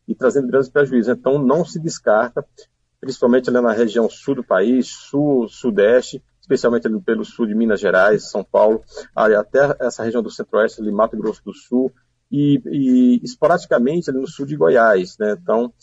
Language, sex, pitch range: Portuguese, male, 115-135 Hz